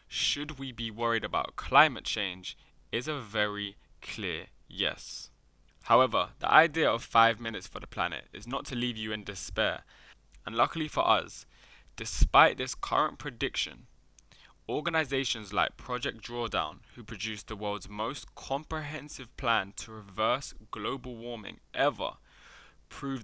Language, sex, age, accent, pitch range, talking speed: English, male, 10-29, British, 105-130 Hz, 135 wpm